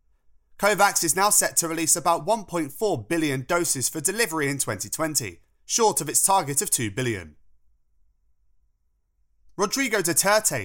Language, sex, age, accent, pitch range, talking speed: English, male, 30-49, British, 125-185 Hz, 130 wpm